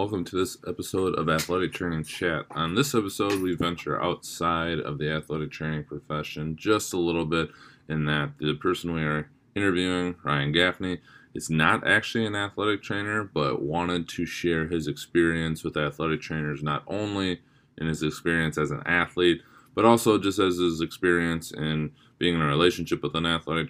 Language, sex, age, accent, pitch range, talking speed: English, male, 20-39, American, 75-90 Hz, 175 wpm